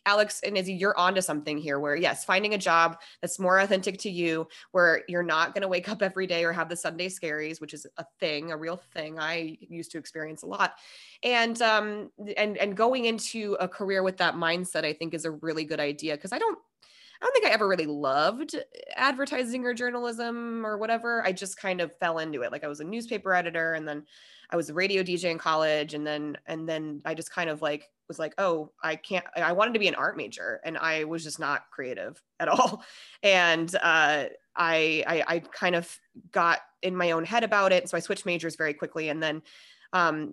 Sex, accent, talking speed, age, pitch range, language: female, American, 225 wpm, 20-39, 155-200 Hz, English